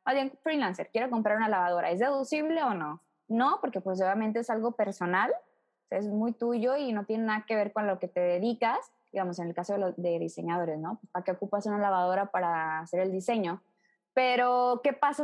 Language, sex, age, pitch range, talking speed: Spanish, female, 20-39, 195-240 Hz, 200 wpm